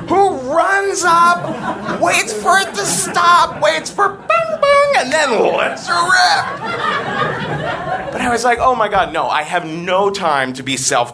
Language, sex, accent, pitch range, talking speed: English, male, American, 180-295 Hz, 170 wpm